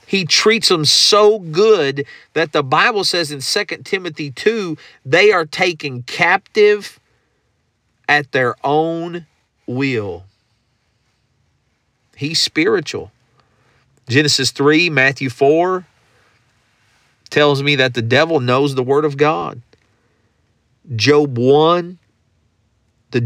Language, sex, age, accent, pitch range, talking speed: English, male, 40-59, American, 110-155 Hz, 105 wpm